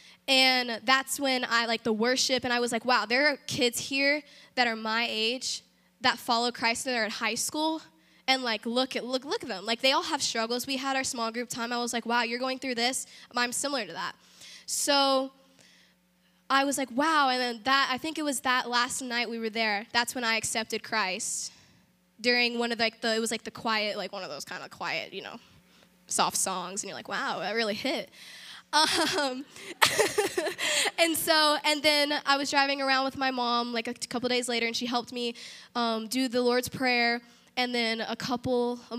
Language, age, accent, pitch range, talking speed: English, 10-29, American, 230-265 Hz, 220 wpm